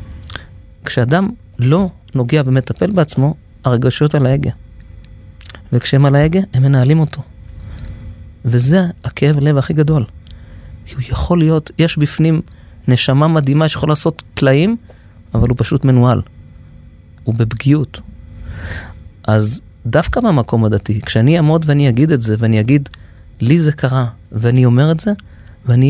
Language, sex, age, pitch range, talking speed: Hebrew, male, 30-49, 100-150 Hz, 130 wpm